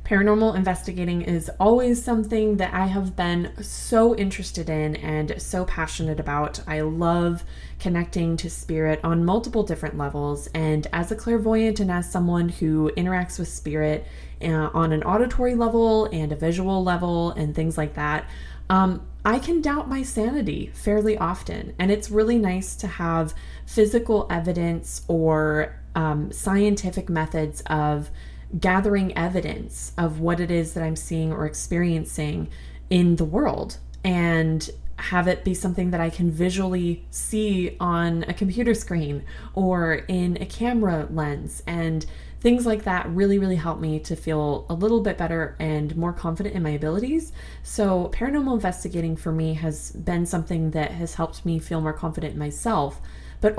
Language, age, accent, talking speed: English, 20-39, American, 160 wpm